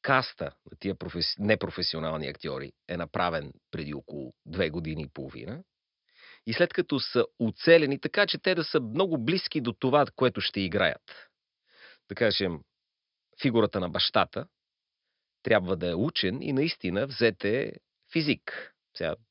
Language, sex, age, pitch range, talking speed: Bulgarian, male, 40-59, 95-140 Hz, 145 wpm